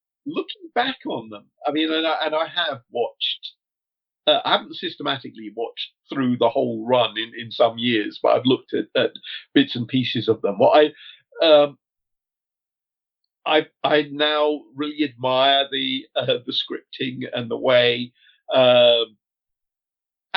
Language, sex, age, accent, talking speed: English, male, 50-69, British, 155 wpm